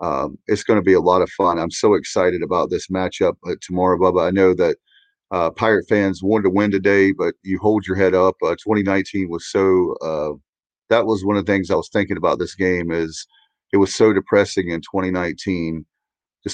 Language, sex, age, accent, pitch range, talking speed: English, male, 40-59, American, 85-95 Hz, 210 wpm